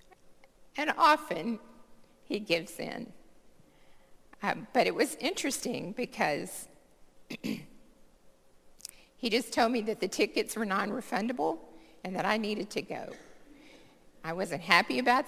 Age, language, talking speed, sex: 50-69, English, 120 wpm, female